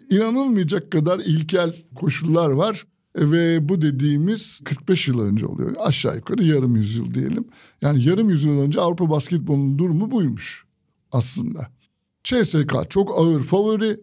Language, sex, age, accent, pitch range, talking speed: Turkish, male, 60-79, native, 145-190 Hz, 135 wpm